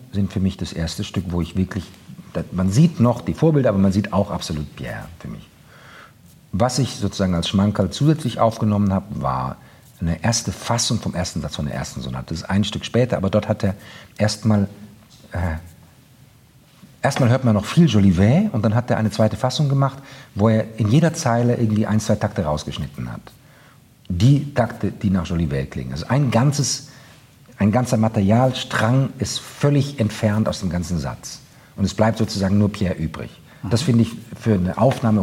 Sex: male